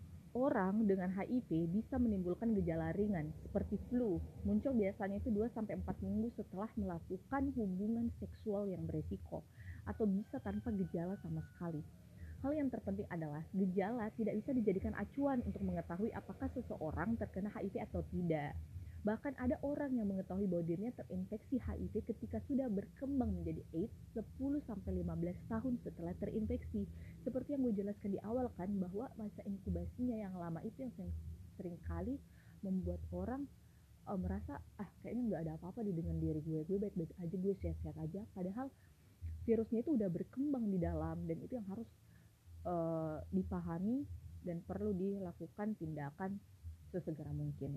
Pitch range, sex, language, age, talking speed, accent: 150-220 Hz, female, Indonesian, 20-39, 140 wpm, native